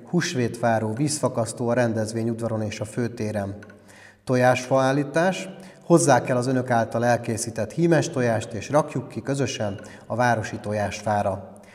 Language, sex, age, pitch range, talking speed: Hungarian, male, 30-49, 110-135 Hz, 130 wpm